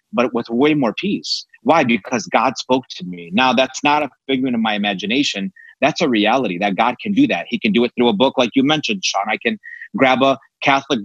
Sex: male